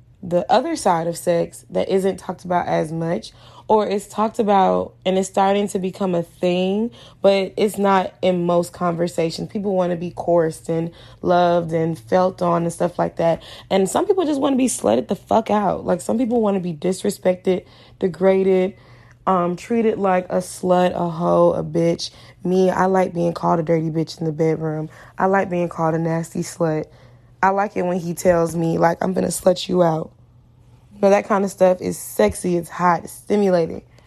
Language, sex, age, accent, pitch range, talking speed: English, female, 20-39, American, 165-195 Hz, 200 wpm